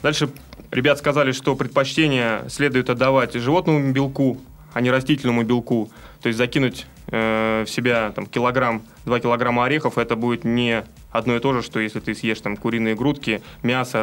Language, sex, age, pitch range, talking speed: Russian, male, 20-39, 120-145 Hz, 165 wpm